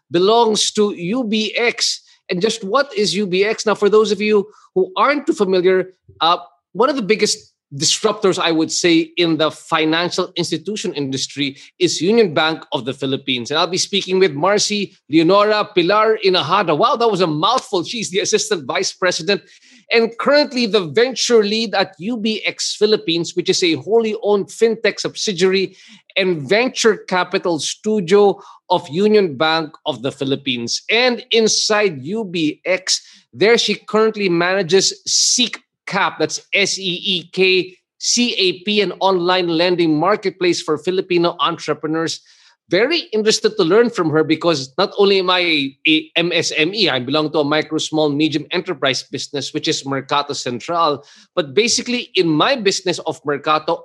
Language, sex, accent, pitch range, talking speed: English, male, Filipino, 165-215 Hz, 145 wpm